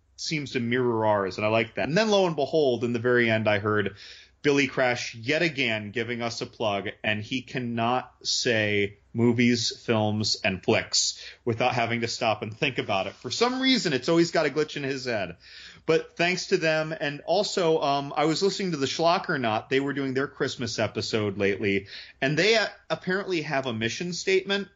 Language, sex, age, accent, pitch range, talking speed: English, male, 30-49, American, 100-140 Hz, 200 wpm